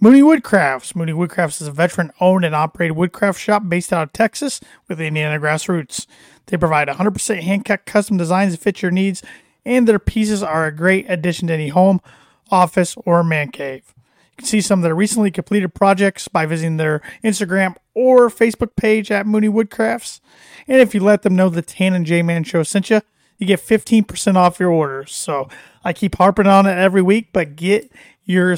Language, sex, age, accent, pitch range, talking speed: English, male, 30-49, American, 160-205 Hz, 195 wpm